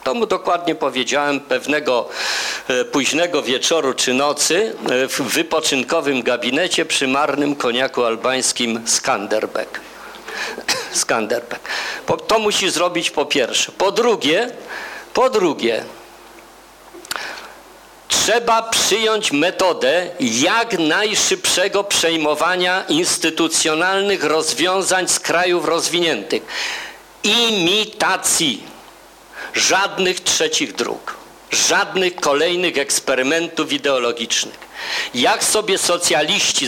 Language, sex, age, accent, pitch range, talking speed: Polish, male, 50-69, native, 155-235 Hz, 80 wpm